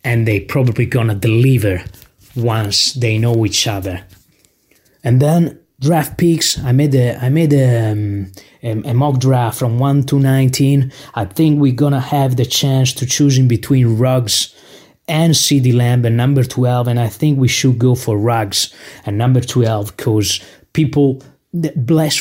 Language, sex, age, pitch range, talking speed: English, male, 20-39, 120-145 Hz, 175 wpm